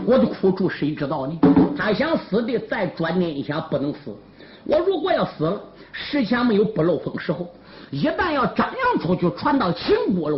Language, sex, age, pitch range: Chinese, male, 50-69, 170-275 Hz